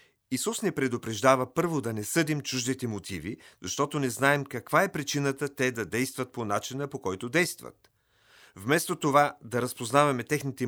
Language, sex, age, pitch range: Bulgarian, male, 40-59, 115-150 Hz